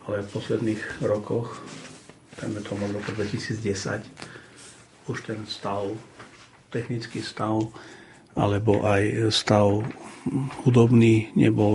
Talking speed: 80 wpm